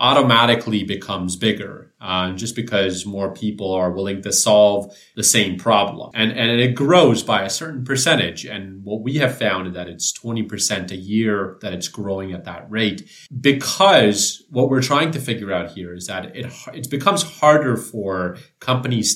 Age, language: 30-49, English